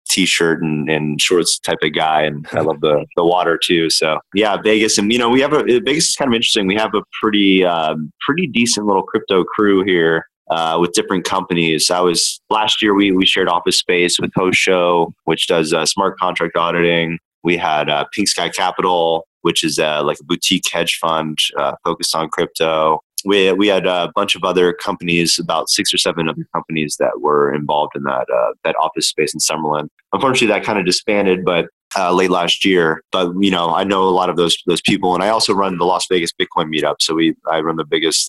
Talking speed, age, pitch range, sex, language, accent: 220 wpm, 20-39, 80-105 Hz, male, English, American